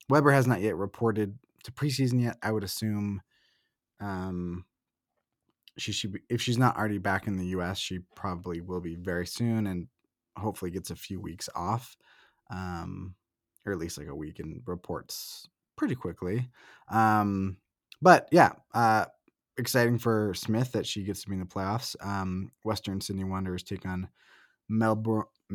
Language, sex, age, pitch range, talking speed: English, male, 20-39, 95-115 Hz, 165 wpm